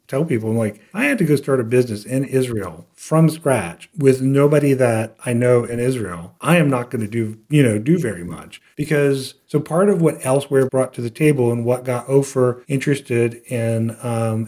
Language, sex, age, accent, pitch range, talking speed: English, male, 40-59, American, 115-140 Hz, 205 wpm